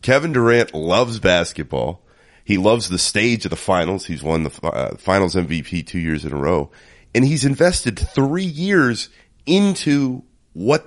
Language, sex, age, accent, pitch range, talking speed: English, male, 30-49, American, 85-125 Hz, 160 wpm